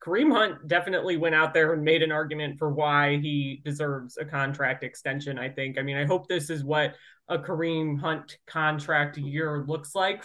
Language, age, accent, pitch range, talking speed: English, 20-39, American, 155-205 Hz, 195 wpm